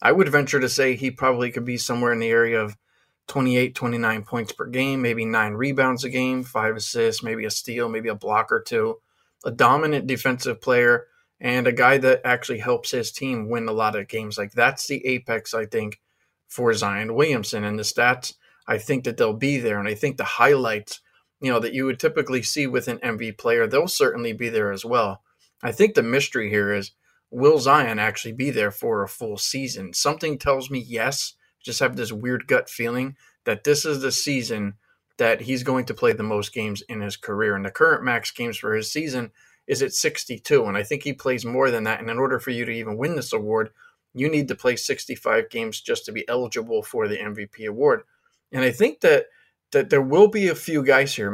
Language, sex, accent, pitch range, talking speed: English, male, American, 115-150 Hz, 220 wpm